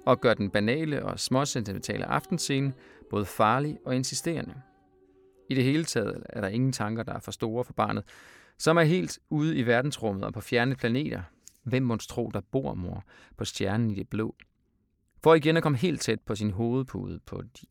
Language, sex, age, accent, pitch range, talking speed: Danish, male, 30-49, native, 105-135 Hz, 190 wpm